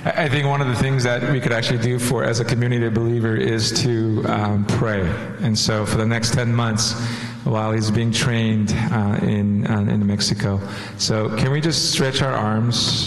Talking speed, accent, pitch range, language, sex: 195 wpm, American, 105-120 Hz, English, male